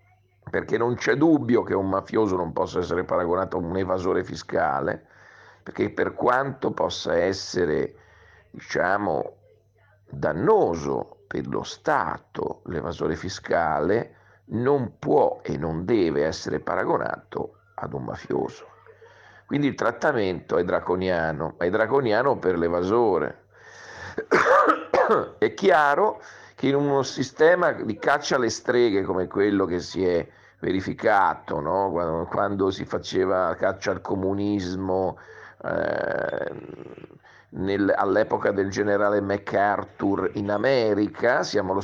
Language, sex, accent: Italian, male, native